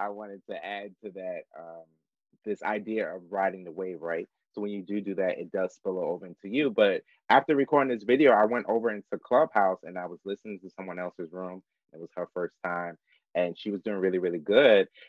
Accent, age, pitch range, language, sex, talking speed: American, 30-49, 95-155 Hz, English, male, 225 wpm